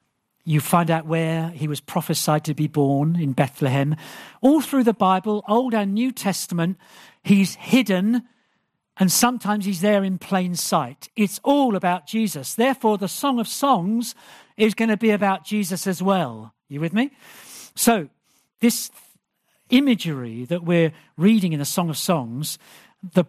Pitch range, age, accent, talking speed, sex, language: 160-220 Hz, 50-69, British, 155 wpm, male, English